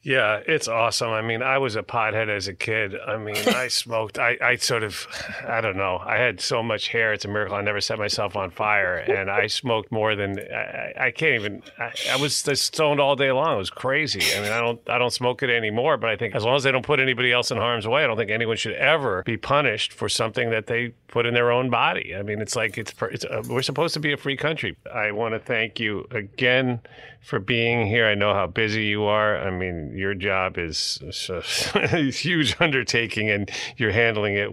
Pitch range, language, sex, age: 100-125 Hz, English, male, 40-59